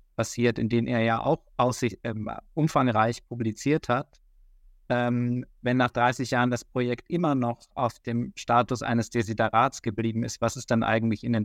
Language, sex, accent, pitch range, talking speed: German, male, German, 115-135 Hz, 175 wpm